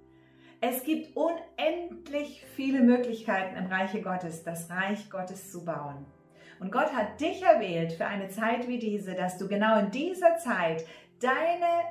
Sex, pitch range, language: female, 195-265 Hz, German